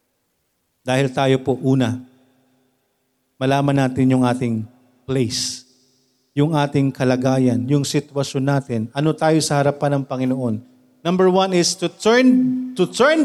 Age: 40-59